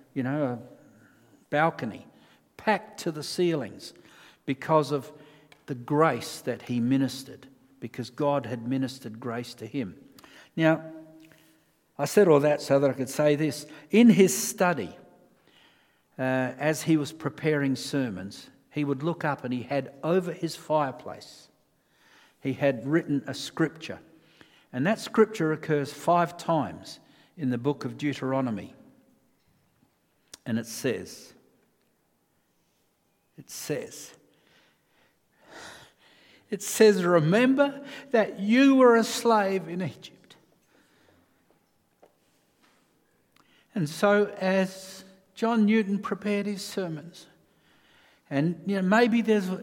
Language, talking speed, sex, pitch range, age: English, 115 wpm, male, 135-190 Hz, 60-79